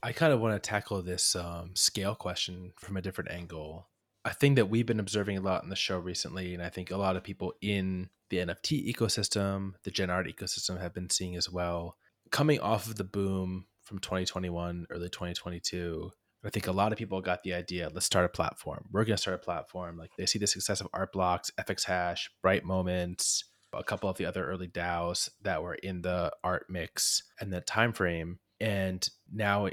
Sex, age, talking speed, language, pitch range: male, 20-39, 210 wpm, English, 90-105 Hz